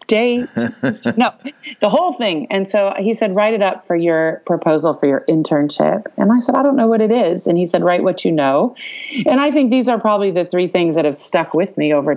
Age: 40-59